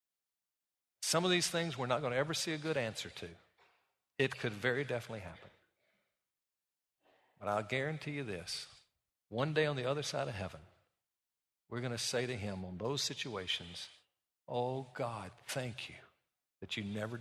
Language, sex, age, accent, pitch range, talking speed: English, male, 50-69, American, 105-145 Hz, 165 wpm